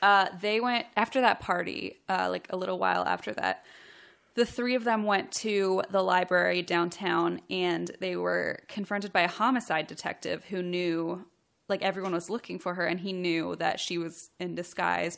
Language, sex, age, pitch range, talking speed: English, female, 10-29, 175-205 Hz, 180 wpm